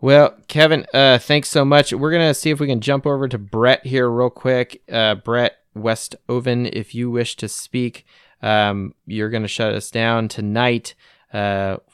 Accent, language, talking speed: American, English, 185 wpm